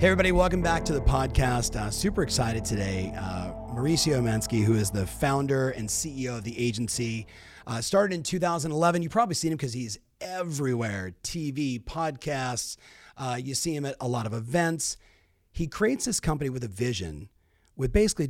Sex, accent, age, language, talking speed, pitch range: male, American, 40-59, English, 175 wpm, 115-165 Hz